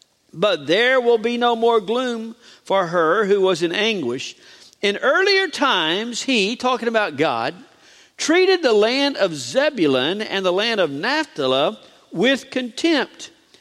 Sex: male